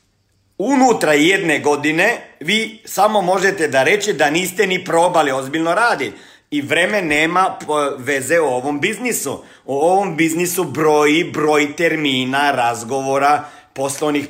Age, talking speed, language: 50-69, 125 wpm, Croatian